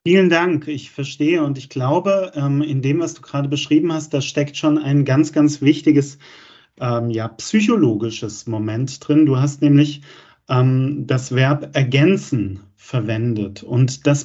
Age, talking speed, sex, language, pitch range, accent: 40-59, 140 wpm, male, German, 130-155 Hz, German